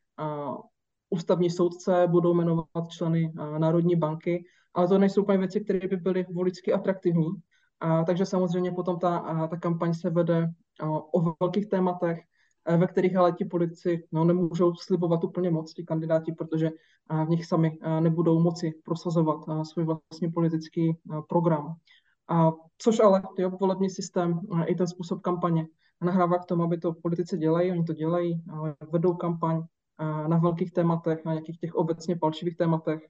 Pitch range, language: 160-180 Hz, Czech